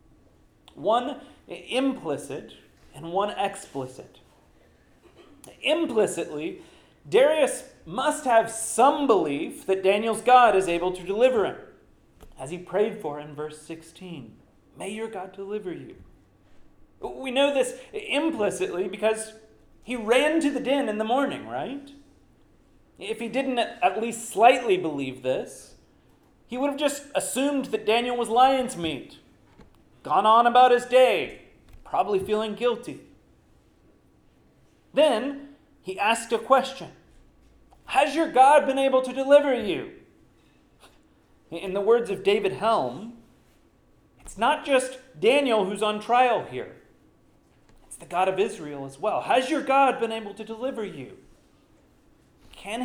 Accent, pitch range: American, 200-270 Hz